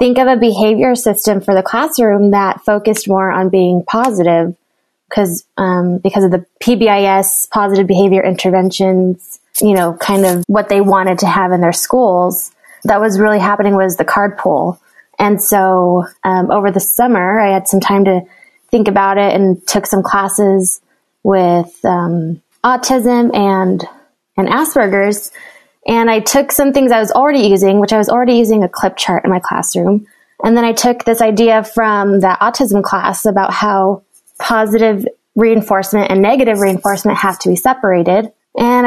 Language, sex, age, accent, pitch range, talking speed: English, female, 20-39, American, 190-230 Hz, 170 wpm